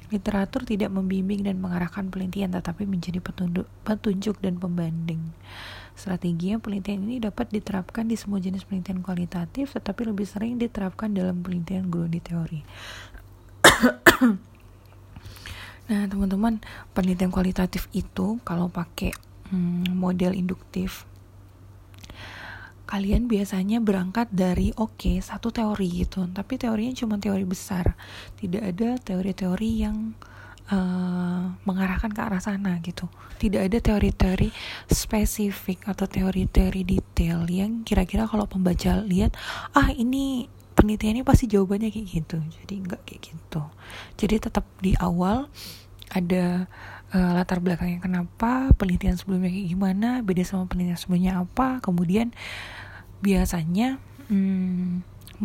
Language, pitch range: Indonesian, 175-205 Hz